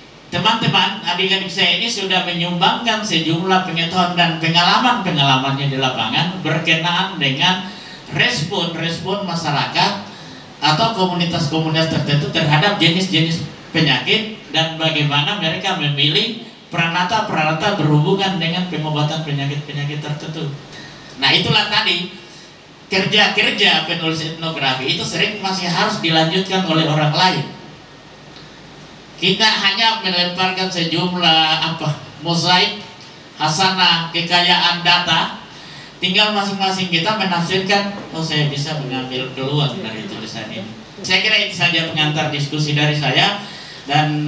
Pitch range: 150-185 Hz